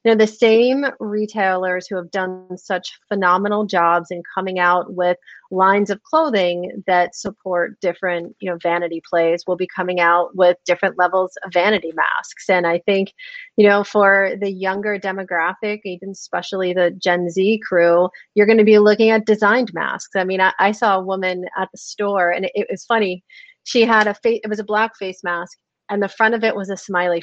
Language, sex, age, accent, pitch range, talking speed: English, female, 30-49, American, 180-210 Hz, 200 wpm